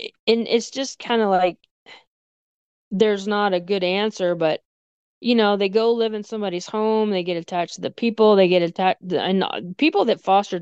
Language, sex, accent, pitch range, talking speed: English, female, American, 175-210 Hz, 185 wpm